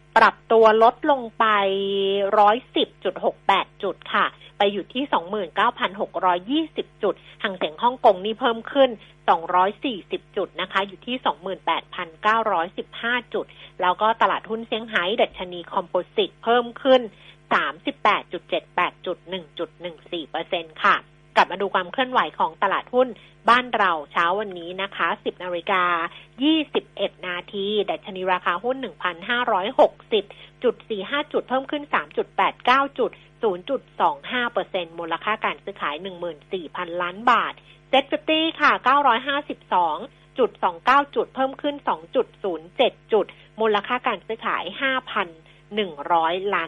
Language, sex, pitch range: Thai, female, 180-250 Hz